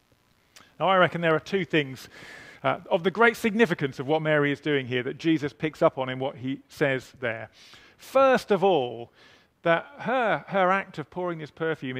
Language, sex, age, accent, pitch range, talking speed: English, male, 40-59, British, 130-180 Hz, 190 wpm